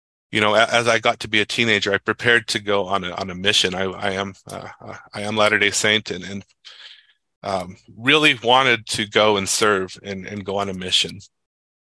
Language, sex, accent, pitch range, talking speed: English, male, American, 100-115 Hz, 215 wpm